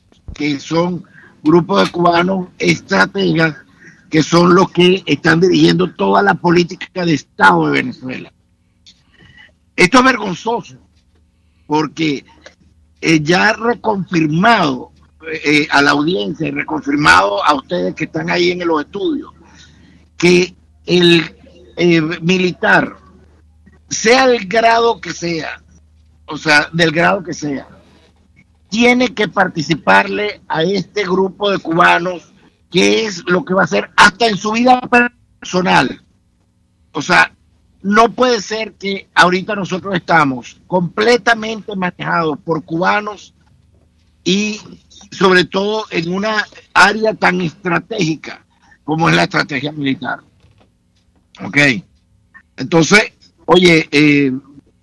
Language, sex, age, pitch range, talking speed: English, male, 50-69, 145-195 Hz, 115 wpm